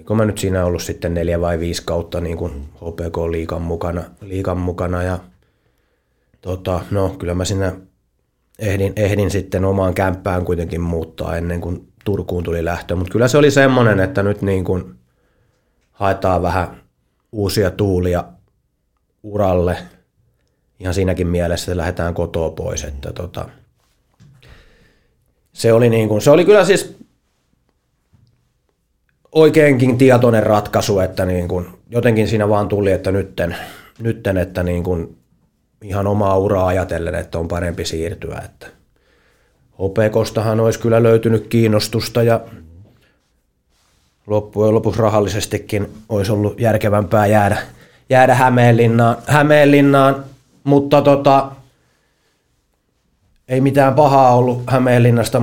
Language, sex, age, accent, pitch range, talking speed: Finnish, male, 30-49, native, 90-115 Hz, 120 wpm